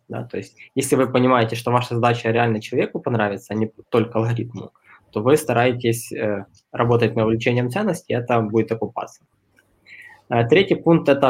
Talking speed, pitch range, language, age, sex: 175 wpm, 115-130 Hz, Russian, 20-39, male